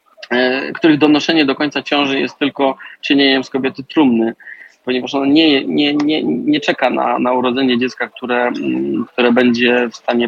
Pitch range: 125-145 Hz